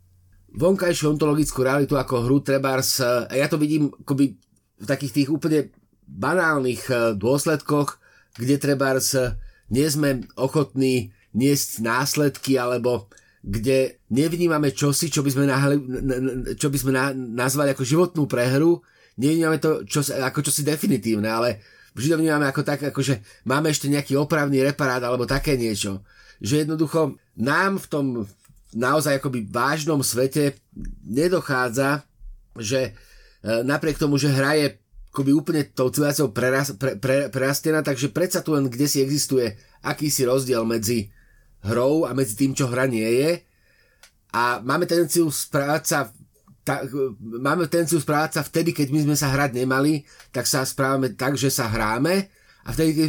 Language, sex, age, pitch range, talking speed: Slovak, male, 30-49, 125-150 Hz, 140 wpm